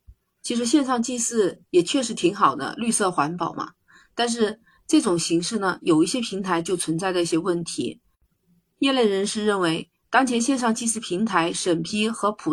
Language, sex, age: Chinese, female, 30-49